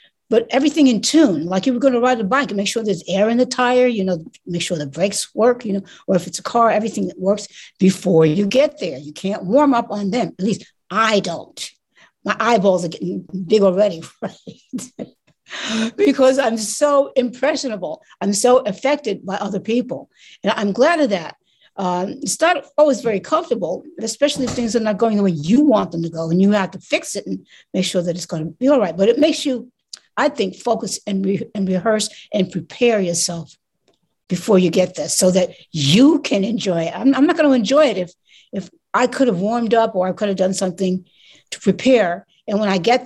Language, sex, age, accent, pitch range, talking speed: English, female, 60-79, American, 185-255 Hz, 220 wpm